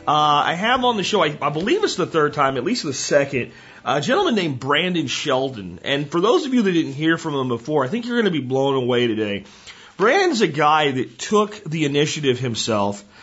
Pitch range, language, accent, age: 120-155 Hz, English, American, 40-59